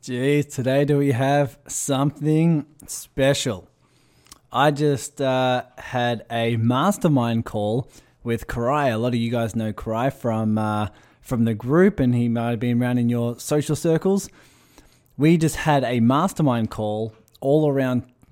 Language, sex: English, male